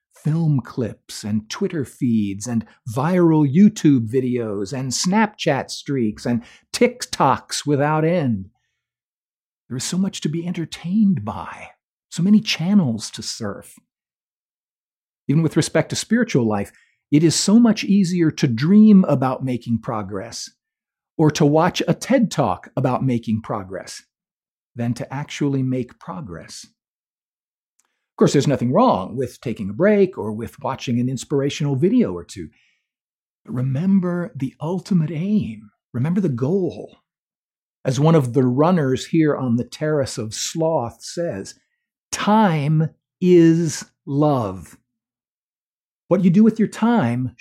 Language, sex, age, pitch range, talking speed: English, male, 50-69, 120-175 Hz, 135 wpm